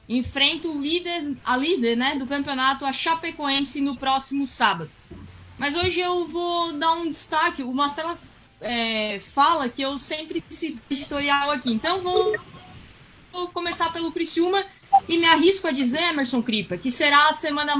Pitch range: 260-325 Hz